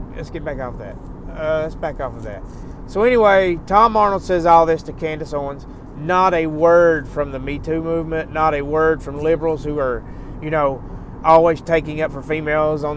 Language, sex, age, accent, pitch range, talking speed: English, male, 30-49, American, 125-165 Hz, 210 wpm